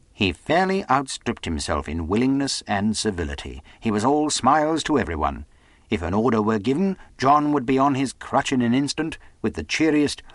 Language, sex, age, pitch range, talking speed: English, male, 60-79, 85-135 Hz, 180 wpm